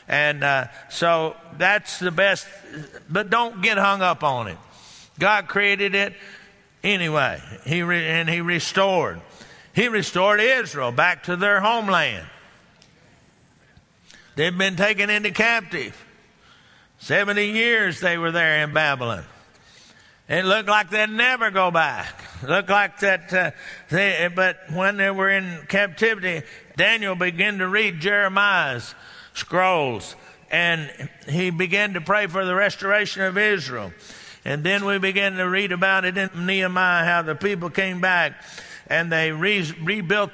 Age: 60-79